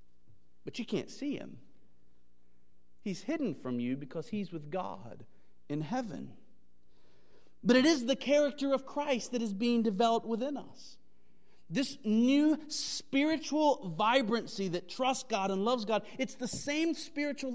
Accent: American